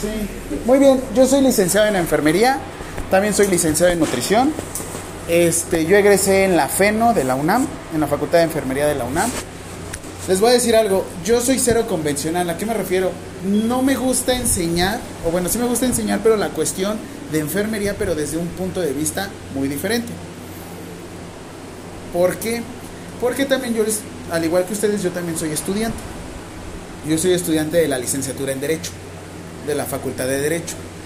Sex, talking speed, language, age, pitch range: male, 180 wpm, Spanish, 30-49, 145-205 Hz